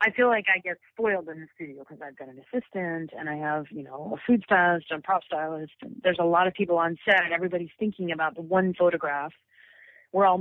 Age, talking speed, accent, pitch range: 40-59, 235 wpm, American, 155-190 Hz